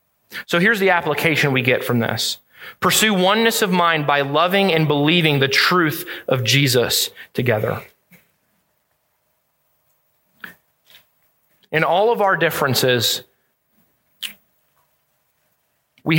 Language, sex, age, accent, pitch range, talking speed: English, male, 30-49, American, 140-170 Hz, 100 wpm